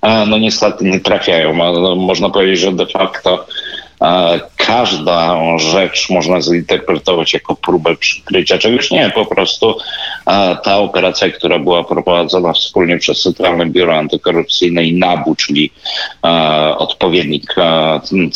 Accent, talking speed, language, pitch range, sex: native, 125 wpm, Polish, 85-100 Hz, male